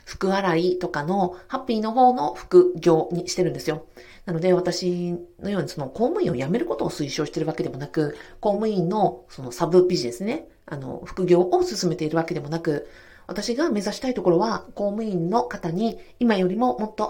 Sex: female